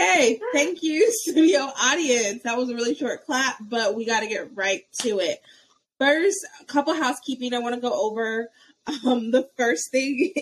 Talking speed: 190 wpm